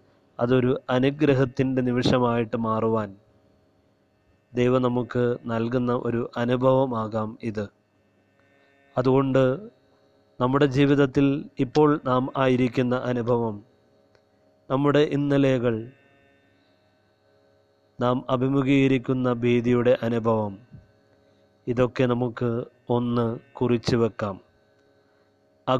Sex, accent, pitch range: male, native, 110-130 Hz